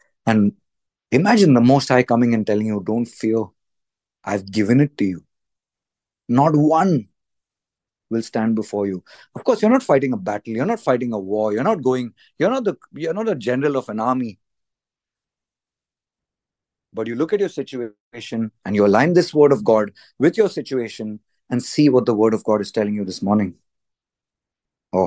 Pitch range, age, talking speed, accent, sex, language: 105-130 Hz, 30-49, 180 wpm, Indian, male, English